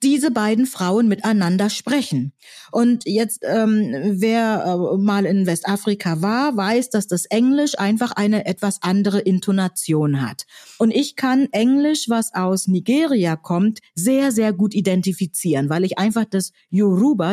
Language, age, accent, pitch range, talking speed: German, 40-59, German, 180-250 Hz, 140 wpm